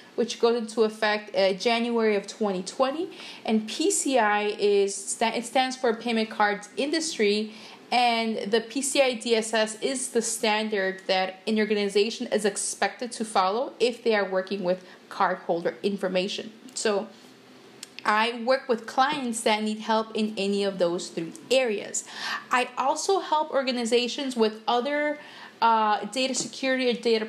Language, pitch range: English, 215-260 Hz